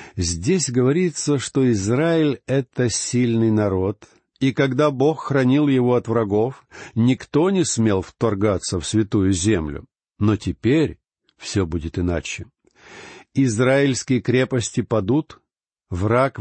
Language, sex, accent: Russian, male, native